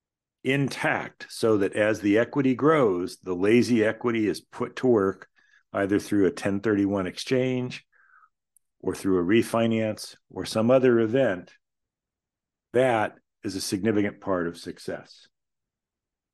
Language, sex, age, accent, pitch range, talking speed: English, male, 50-69, American, 95-130 Hz, 125 wpm